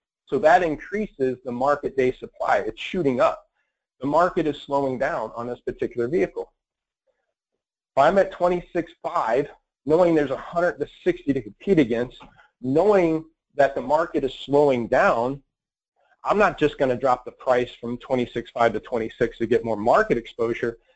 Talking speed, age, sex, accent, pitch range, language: 150 wpm, 40-59, male, American, 120-165 Hz, English